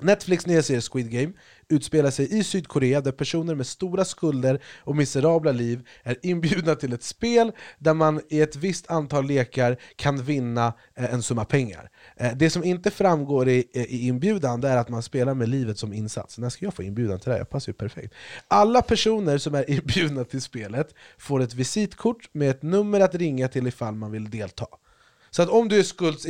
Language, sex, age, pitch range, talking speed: Swedish, male, 30-49, 125-170 Hz, 195 wpm